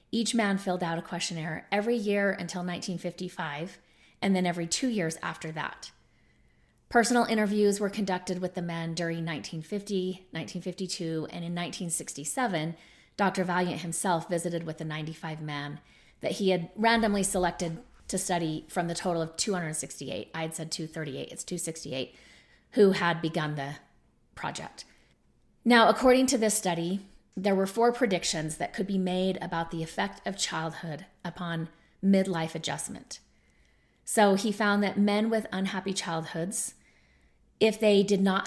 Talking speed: 145 wpm